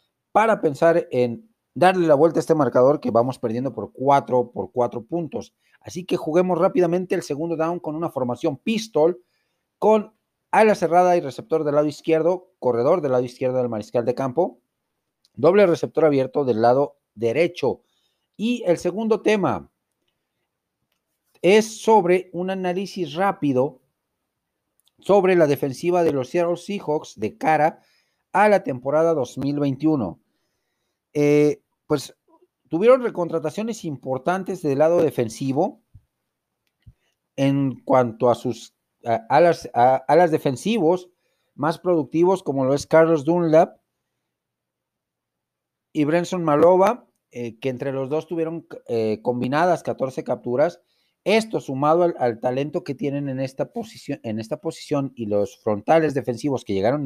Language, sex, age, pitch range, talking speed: Spanish, male, 40-59, 130-175 Hz, 135 wpm